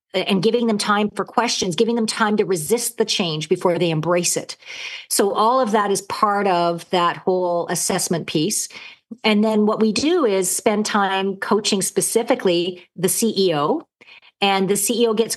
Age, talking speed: 50-69, 170 wpm